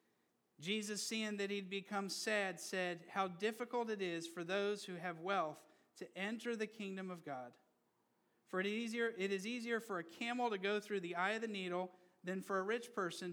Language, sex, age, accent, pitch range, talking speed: English, male, 40-59, American, 185-210 Hz, 195 wpm